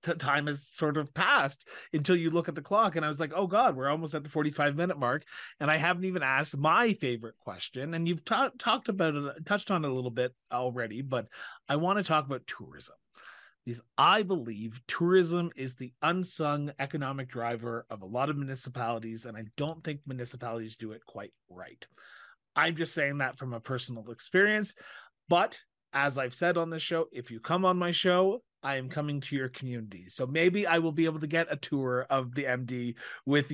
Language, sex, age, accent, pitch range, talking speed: English, male, 30-49, American, 125-160 Hz, 205 wpm